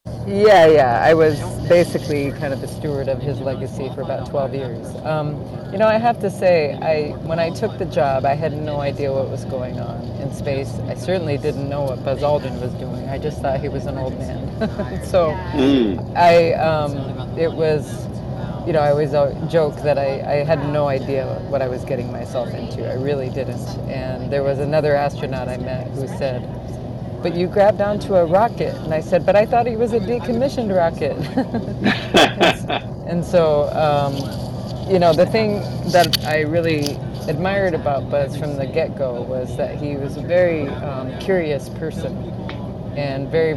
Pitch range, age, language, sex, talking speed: 130-160 Hz, 30-49, English, female, 185 wpm